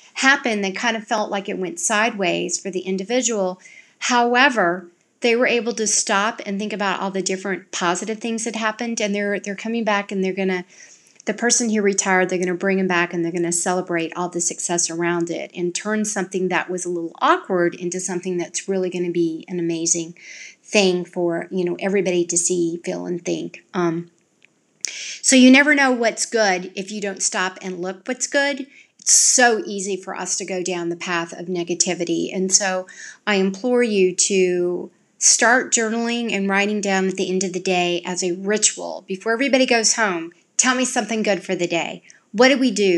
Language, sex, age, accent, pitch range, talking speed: English, female, 40-59, American, 175-225 Hz, 200 wpm